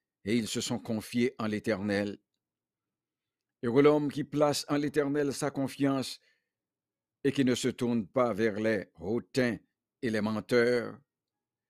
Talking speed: 140 wpm